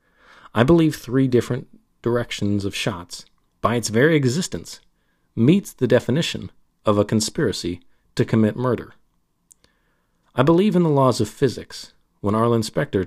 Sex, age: male, 40-59